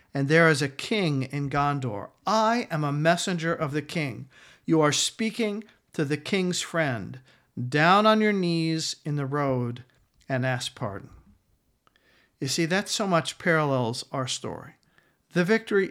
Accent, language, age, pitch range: American, English, 50-69, 130-175 Hz